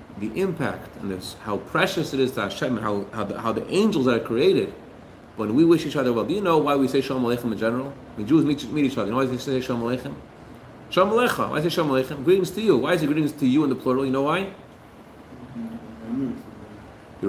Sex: male